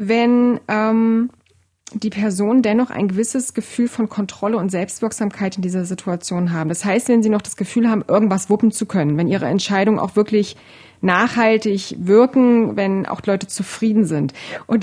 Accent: German